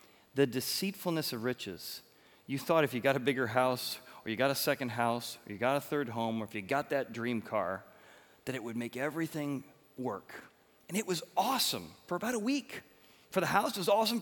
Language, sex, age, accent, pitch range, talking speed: English, male, 30-49, American, 130-180 Hz, 215 wpm